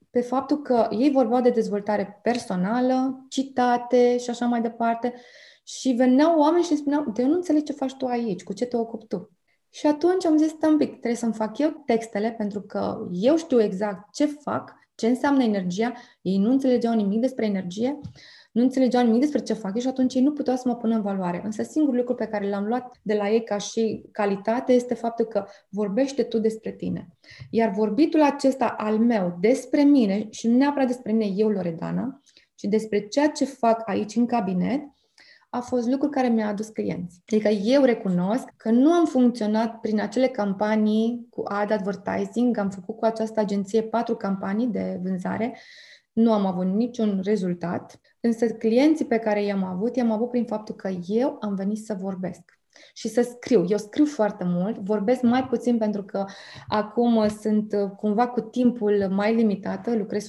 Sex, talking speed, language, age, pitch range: female, 185 wpm, Romanian, 20-39, 210-255 Hz